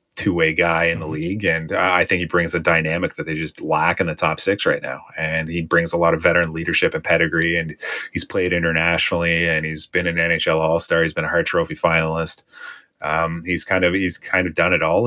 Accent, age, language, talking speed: American, 30-49, English, 230 wpm